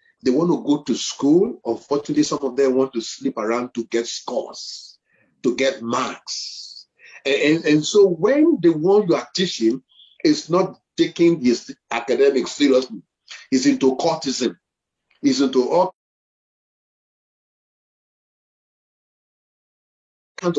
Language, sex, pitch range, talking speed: English, male, 130-210 Hz, 125 wpm